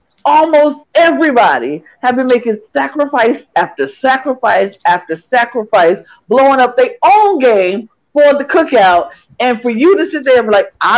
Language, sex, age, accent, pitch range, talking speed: English, female, 50-69, American, 190-290 Hz, 155 wpm